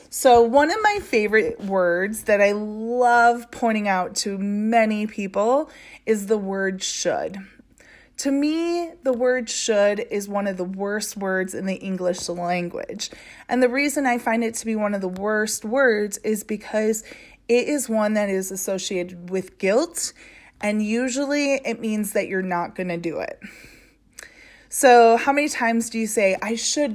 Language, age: English, 20-39